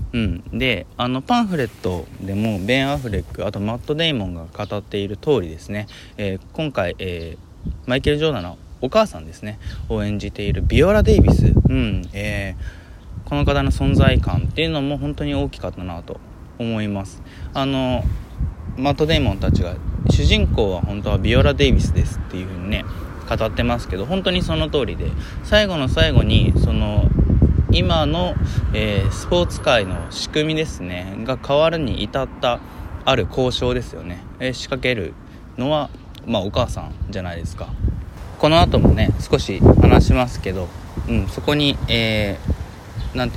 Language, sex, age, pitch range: Japanese, male, 20-39, 90-125 Hz